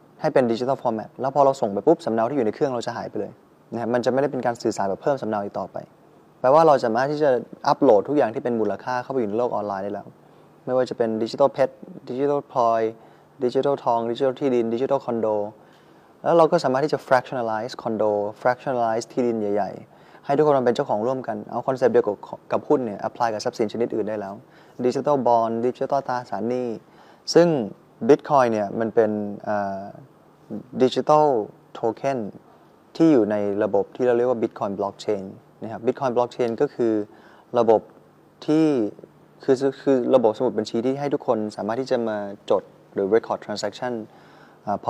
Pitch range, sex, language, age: 110-130 Hz, male, Thai, 20-39